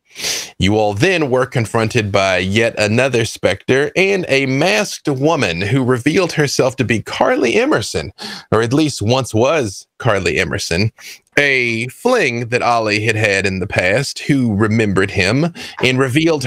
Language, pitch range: English, 110-145 Hz